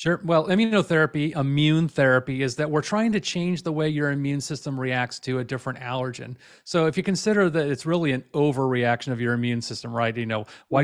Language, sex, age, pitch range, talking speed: English, male, 30-49, 120-145 Hz, 210 wpm